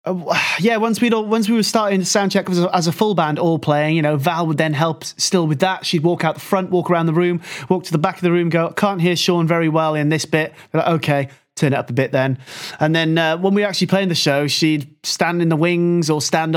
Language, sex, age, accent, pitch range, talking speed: English, male, 30-49, British, 155-200 Hz, 285 wpm